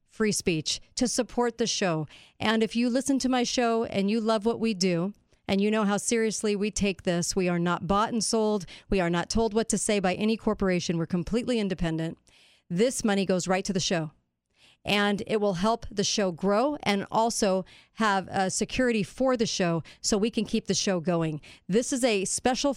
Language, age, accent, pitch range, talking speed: English, 40-59, American, 180-215 Hz, 210 wpm